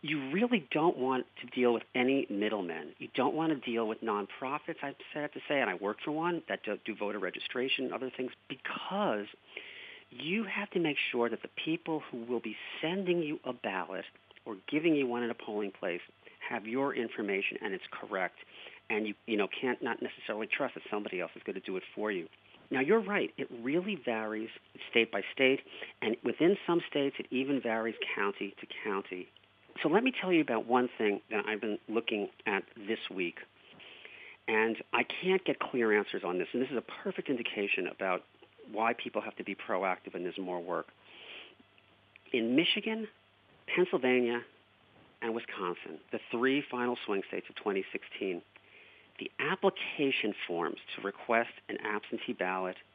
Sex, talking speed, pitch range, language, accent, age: male, 180 wpm, 110-160 Hz, English, American, 40-59